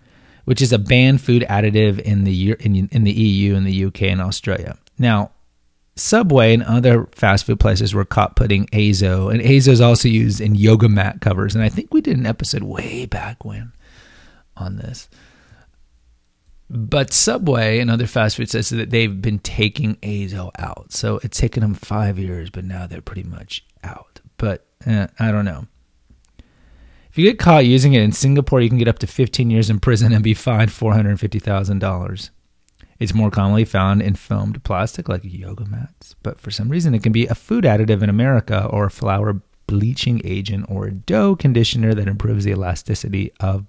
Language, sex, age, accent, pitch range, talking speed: English, male, 30-49, American, 100-120 Hz, 185 wpm